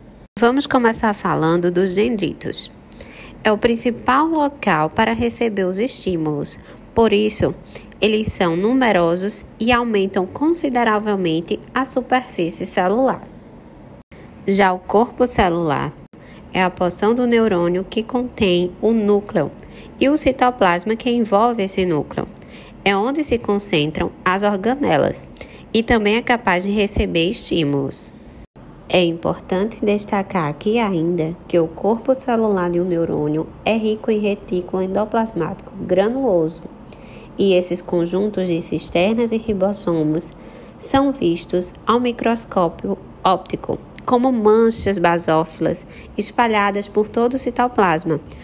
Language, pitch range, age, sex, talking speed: Portuguese, 180-235 Hz, 20-39, female, 120 wpm